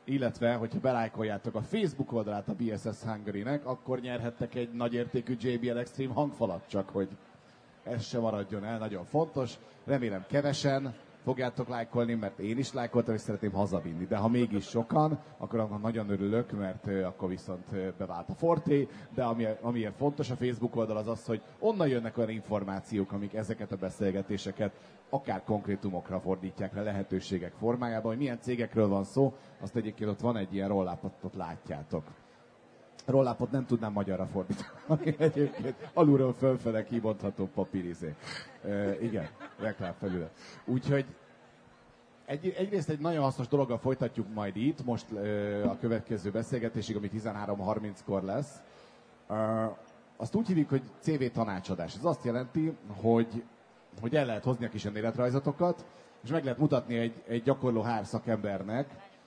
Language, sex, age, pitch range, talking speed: Hungarian, male, 30-49, 105-130 Hz, 145 wpm